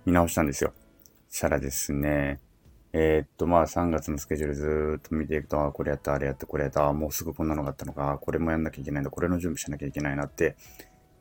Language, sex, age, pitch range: Japanese, male, 20-39, 75-95 Hz